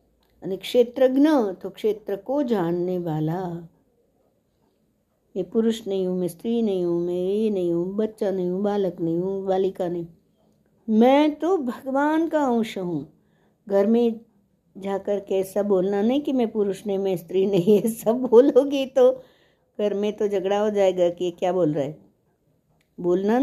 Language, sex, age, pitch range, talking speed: Hindi, female, 60-79, 185-235 Hz, 155 wpm